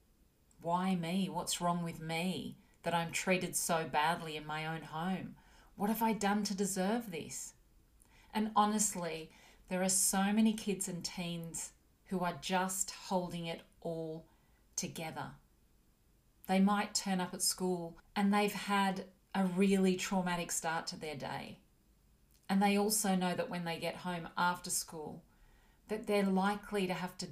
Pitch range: 165-190 Hz